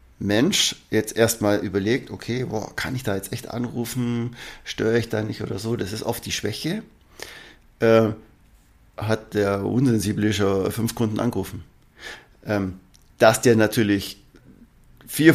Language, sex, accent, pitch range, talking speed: German, male, German, 100-125 Hz, 135 wpm